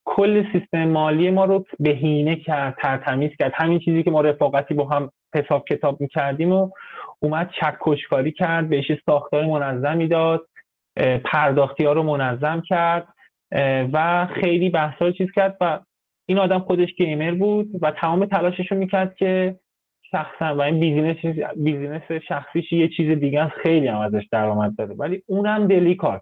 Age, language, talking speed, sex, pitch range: 20-39, Persian, 150 wpm, male, 145-175 Hz